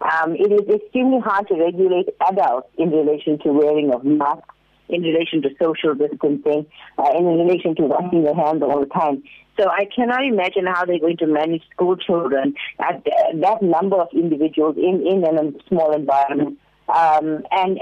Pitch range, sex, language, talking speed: 160-210 Hz, female, English, 180 wpm